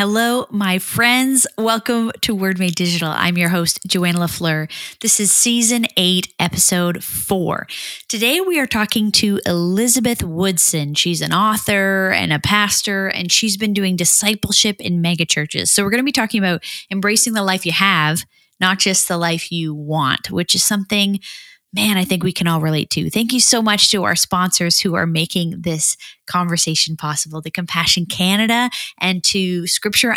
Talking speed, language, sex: 175 wpm, English, female